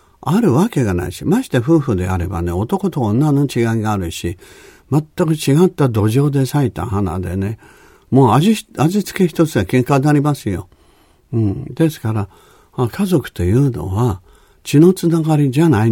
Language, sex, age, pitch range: Japanese, male, 50-69, 95-150 Hz